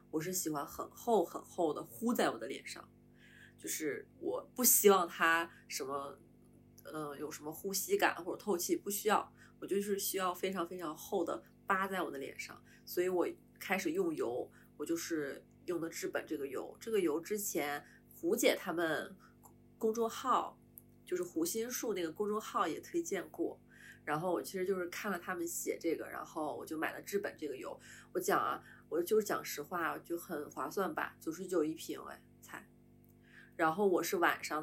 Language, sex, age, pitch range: Chinese, female, 30-49, 170-235 Hz